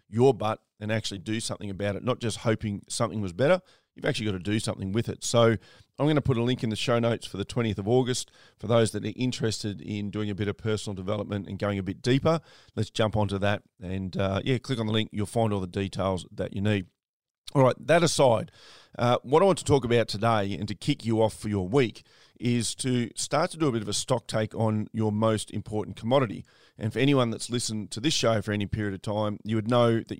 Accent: Australian